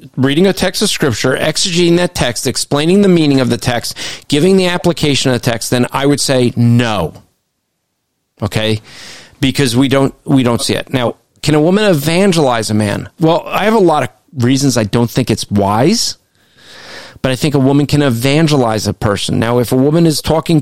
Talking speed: 190 wpm